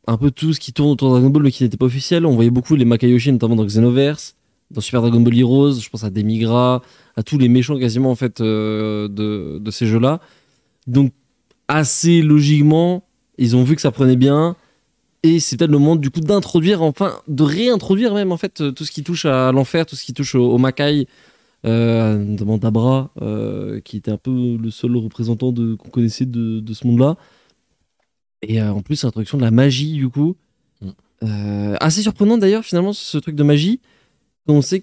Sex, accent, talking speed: male, French, 205 wpm